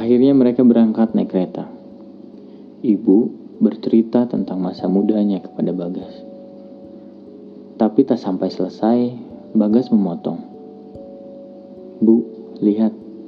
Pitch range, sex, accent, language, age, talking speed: 100-115 Hz, male, native, Indonesian, 30-49, 90 wpm